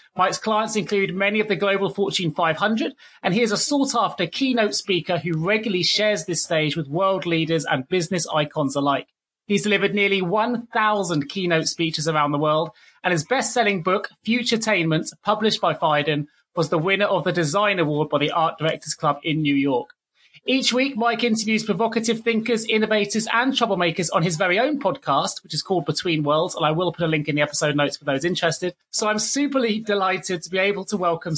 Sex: male